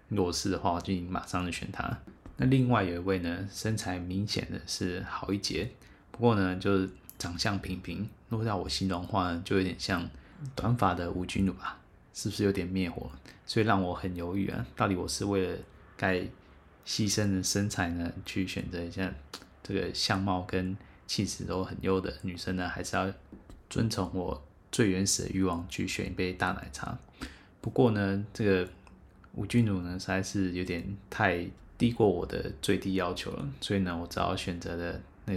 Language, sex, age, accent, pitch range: Chinese, male, 20-39, native, 90-100 Hz